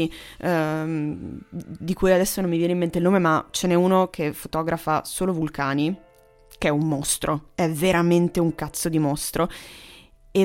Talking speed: 165 wpm